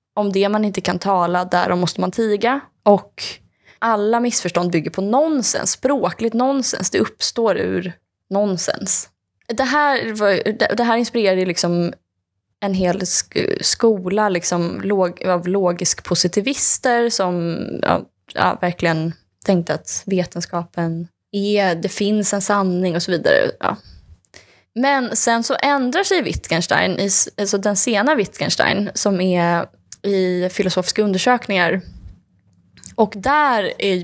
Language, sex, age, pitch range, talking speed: Swedish, female, 20-39, 180-220 Hz, 125 wpm